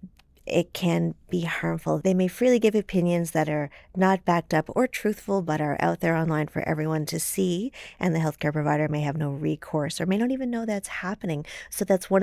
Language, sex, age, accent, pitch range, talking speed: English, female, 40-59, American, 145-190 Hz, 210 wpm